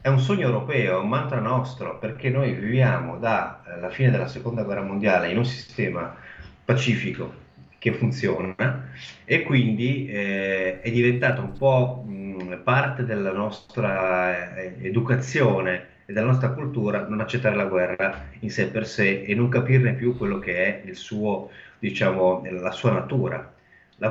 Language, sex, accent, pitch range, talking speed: Italian, male, native, 90-125 Hz, 150 wpm